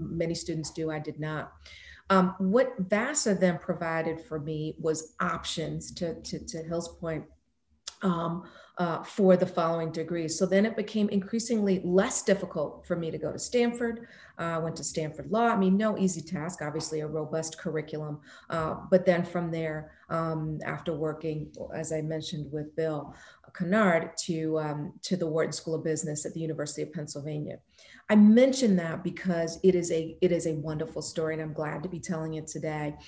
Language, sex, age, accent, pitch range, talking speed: English, female, 40-59, American, 155-180 Hz, 180 wpm